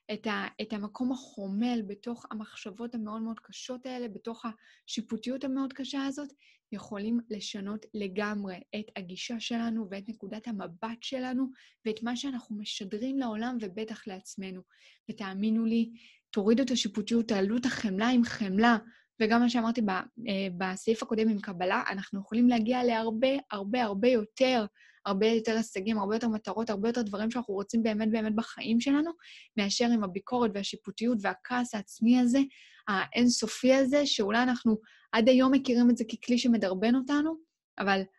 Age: 20-39